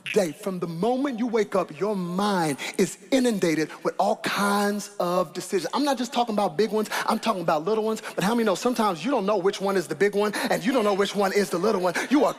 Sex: male